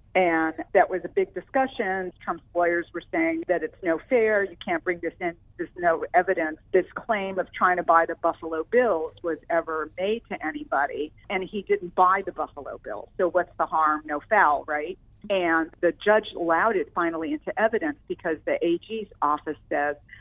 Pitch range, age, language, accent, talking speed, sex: 160-200 Hz, 50-69, English, American, 185 wpm, female